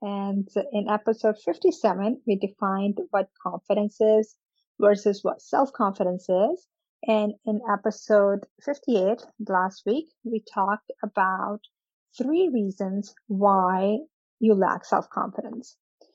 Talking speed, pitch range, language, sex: 105 wpm, 200-245 Hz, English, female